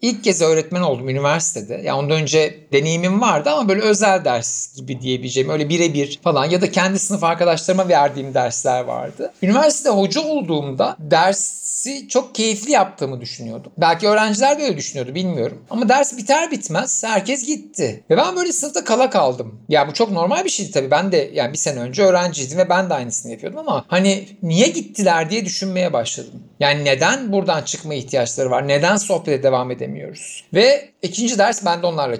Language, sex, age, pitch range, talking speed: Turkish, male, 60-79, 155-220 Hz, 175 wpm